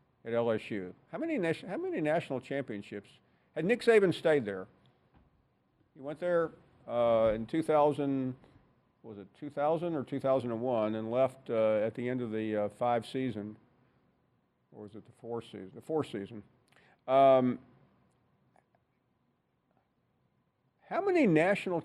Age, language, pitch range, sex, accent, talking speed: 50-69, English, 120-160 Hz, male, American, 130 wpm